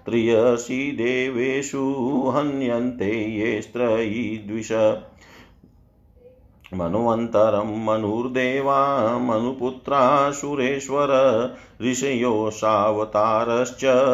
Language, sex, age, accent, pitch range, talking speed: Hindi, male, 50-69, native, 110-140 Hz, 45 wpm